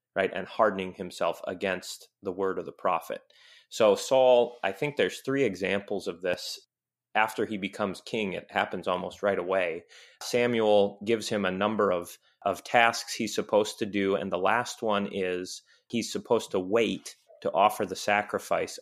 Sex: male